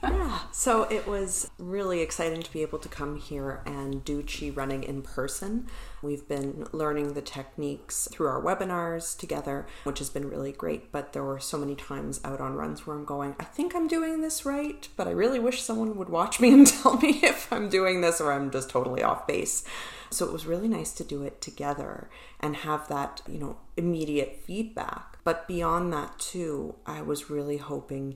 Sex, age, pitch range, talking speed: female, 40-59, 135-170 Hz, 200 wpm